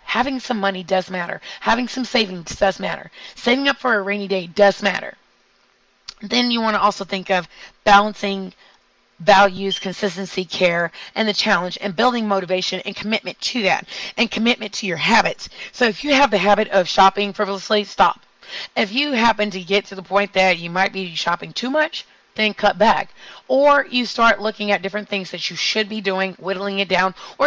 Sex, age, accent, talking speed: female, 30-49, American, 190 wpm